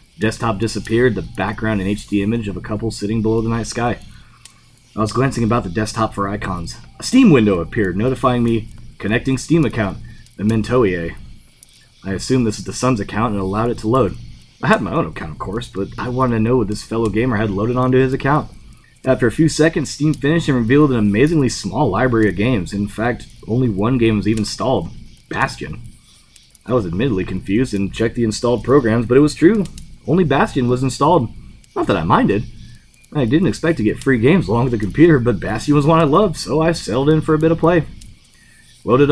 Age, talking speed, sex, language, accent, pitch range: 20-39, 210 wpm, male, English, American, 110-135 Hz